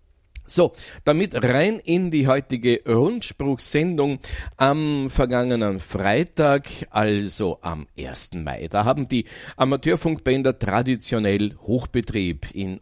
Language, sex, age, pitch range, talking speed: German, male, 50-69, 100-130 Hz, 100 wpm